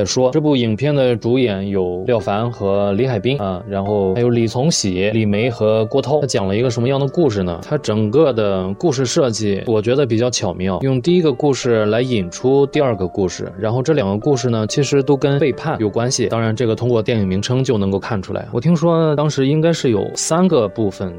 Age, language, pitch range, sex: 20-39, Chinese, 100-130 Hz, male